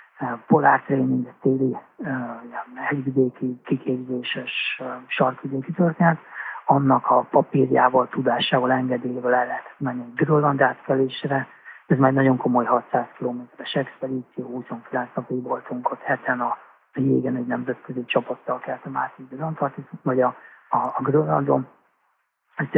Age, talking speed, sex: 40-59, 115 wpm, male